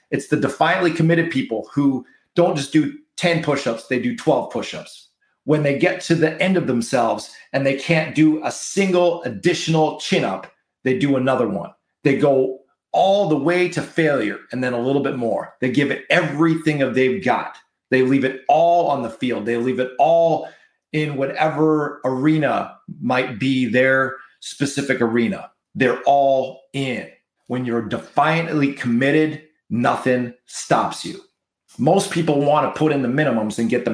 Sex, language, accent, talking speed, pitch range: male, English, American, 170 wpm, 130-160 Hz